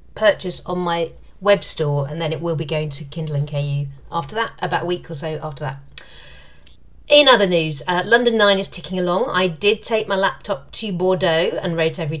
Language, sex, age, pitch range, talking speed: English, female, 40-59, 155-185 Hz, 210 wpm